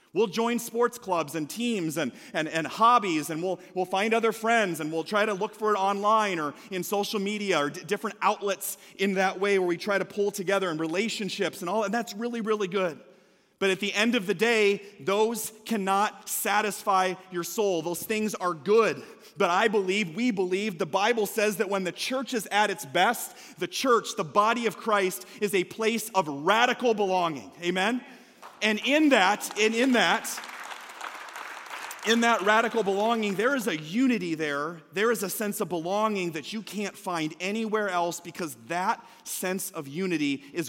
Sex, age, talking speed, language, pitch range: male, 30-49, 190 wpm, English, 185-220 Hz